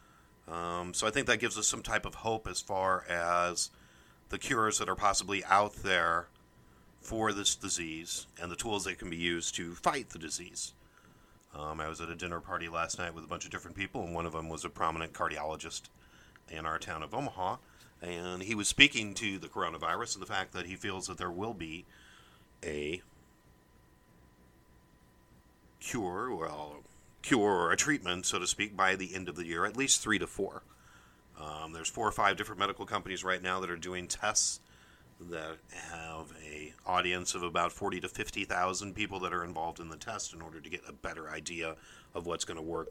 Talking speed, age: 200 wpm, 40-59